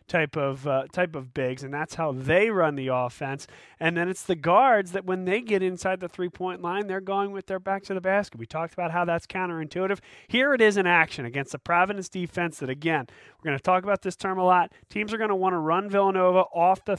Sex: male